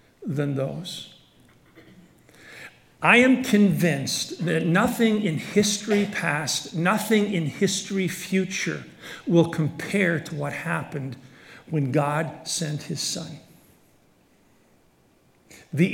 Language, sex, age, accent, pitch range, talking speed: English, male, 60-79, American, 175-230 Hz, 95 wpm